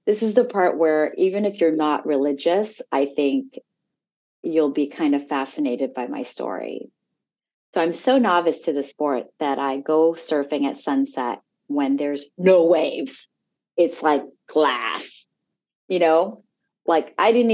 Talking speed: 155 wpm